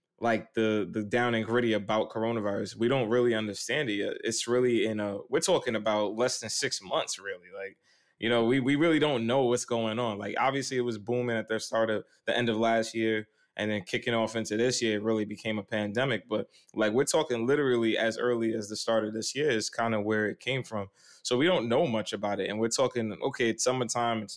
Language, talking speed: English, 240 wpm